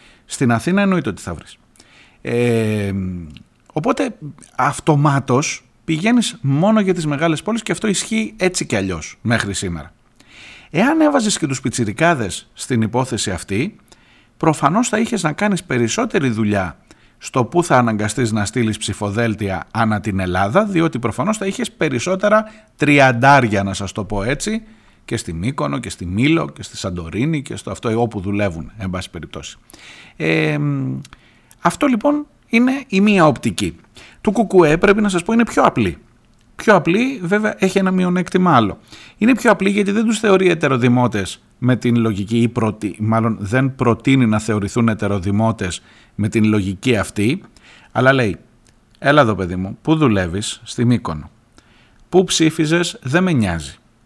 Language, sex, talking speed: Greek, male, 150 wpm